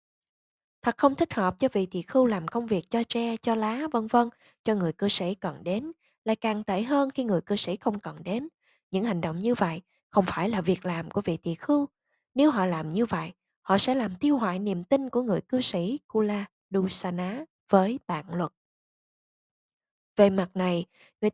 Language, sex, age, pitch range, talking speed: Vietnamese, female, 20-39, 185-255 Hz, 205 wpm